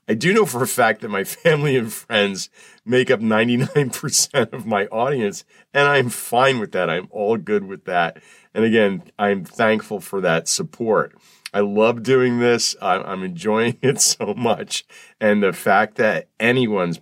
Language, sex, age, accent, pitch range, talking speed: English, male, 40-59, American, 105-145 Hz, 175 wpm